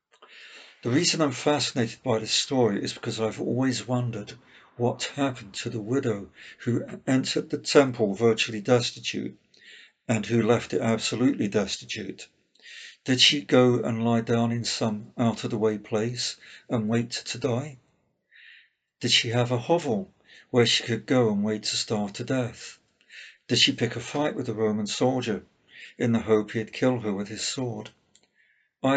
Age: 50-69